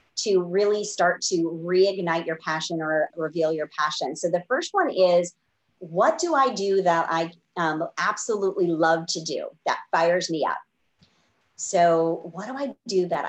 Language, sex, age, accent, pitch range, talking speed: English, female, 30-49, American, 160-195 Hz, 165 wpm